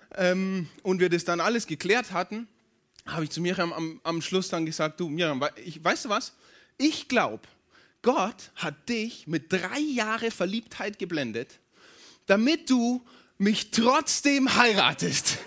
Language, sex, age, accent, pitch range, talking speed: German, male, 20-39, German, 160-235 Hz, 145 wpm